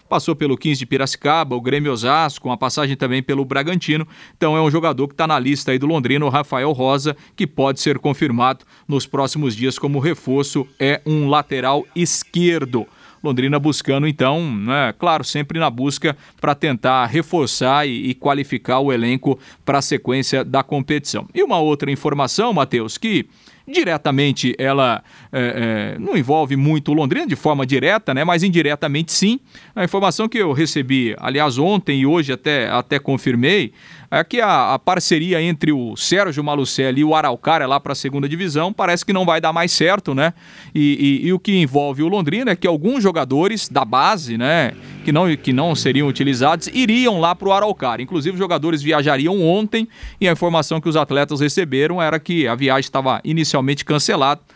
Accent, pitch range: Brazilian, 135-165 Hz